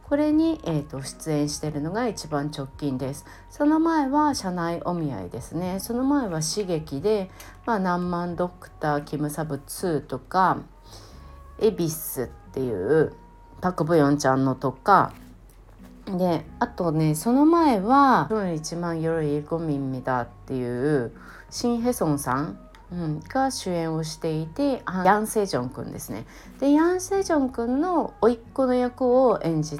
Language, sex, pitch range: Japanese, female, 140-230 Hz